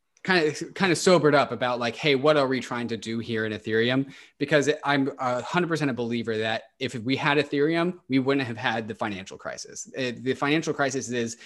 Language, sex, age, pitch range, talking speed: English, male, 20-39, 115-145 Hz, 205 wpm